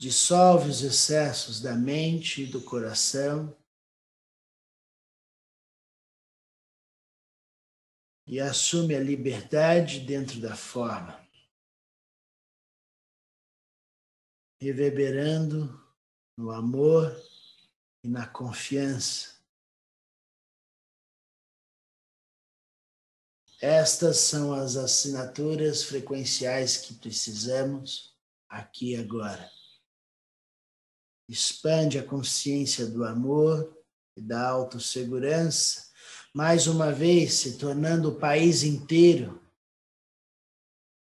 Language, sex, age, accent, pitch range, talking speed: Portuguese, male, 50-69, Brazilian, 125-150 Hz, 70 wpm